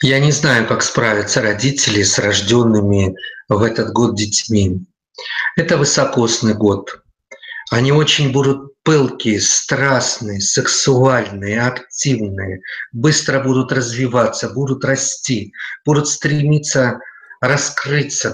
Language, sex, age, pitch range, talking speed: Russian, male, 50-69, 120-145 Hz, 100 wpm